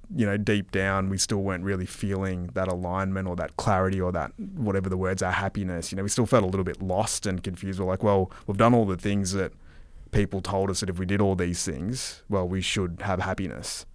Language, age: English, 20-39